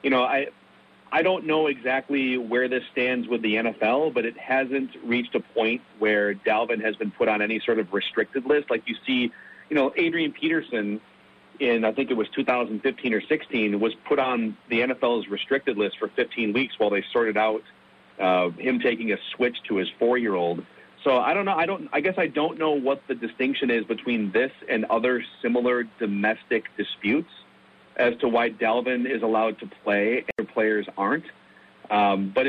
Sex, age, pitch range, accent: male, 40-59, 105-135 Hz, American